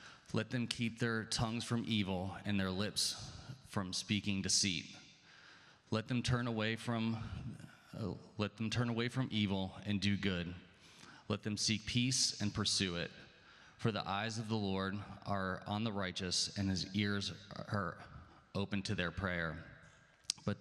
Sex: male